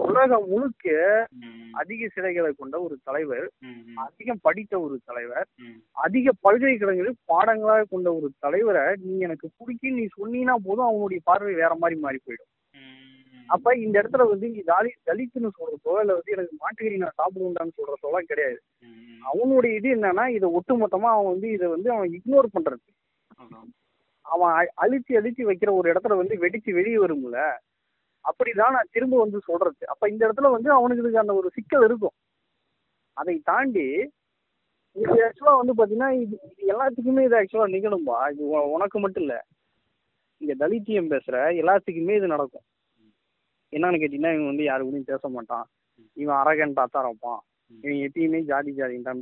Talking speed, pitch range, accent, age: 140 wpm, 150-245 Hz, native, 20-39